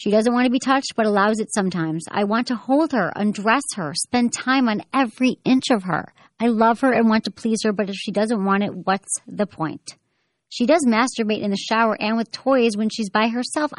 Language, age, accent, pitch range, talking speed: English, 40-59, American, 185-245 Hz, 235 wpm